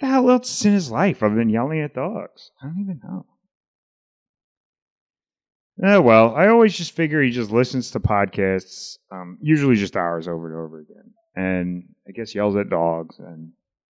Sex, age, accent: male, 30-49, American